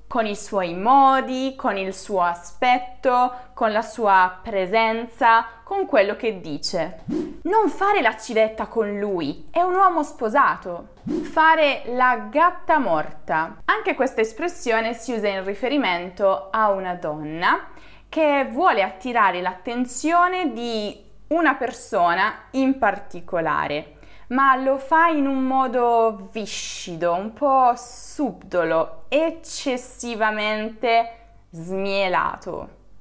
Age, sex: 20-39, female